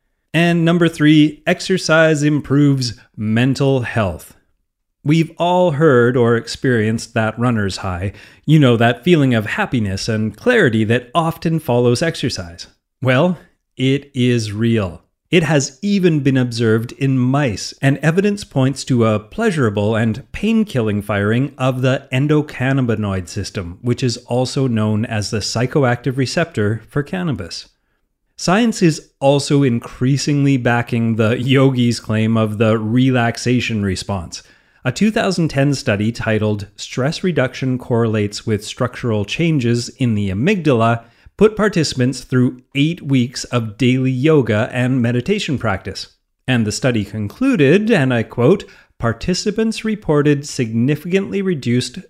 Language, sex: English, male